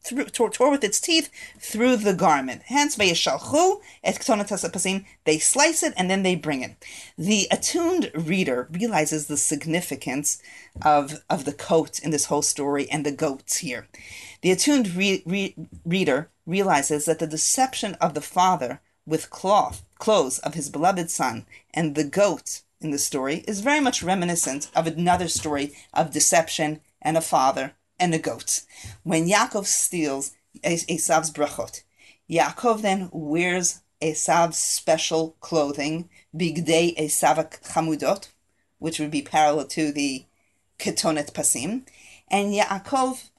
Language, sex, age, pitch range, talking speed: English, female, 40-59, 150-200 Hz, 135 wpm